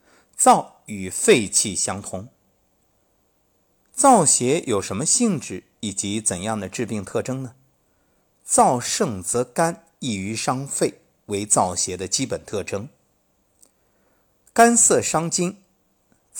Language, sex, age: Chinese, male, 50-69